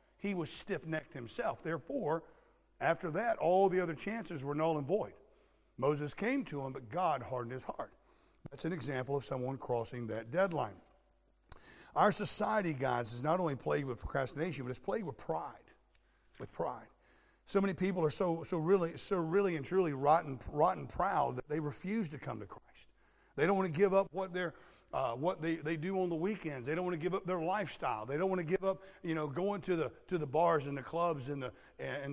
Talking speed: 215 wpm